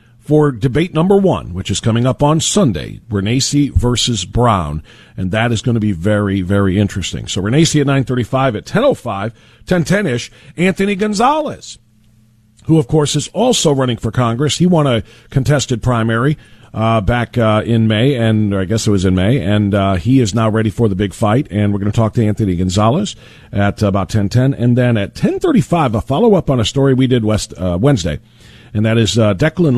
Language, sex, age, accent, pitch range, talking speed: English, male, 50-69, American, 110-135 Hz, 200 wpm